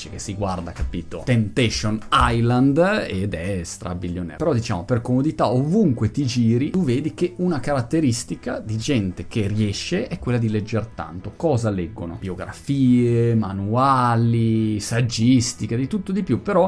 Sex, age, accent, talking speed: male, 30-49, native, 145 wpm